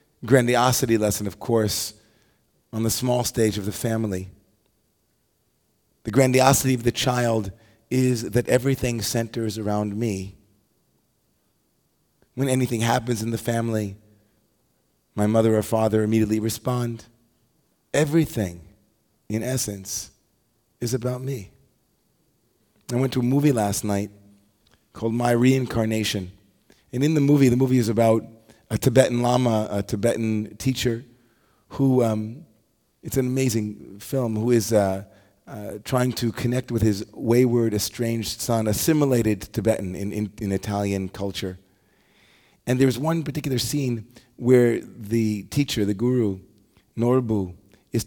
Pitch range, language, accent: 105-125 Hz, English, American